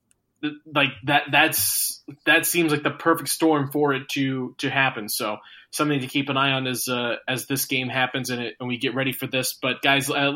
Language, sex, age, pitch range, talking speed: English, male, 20-39, 130-150 Hz, 210 wpm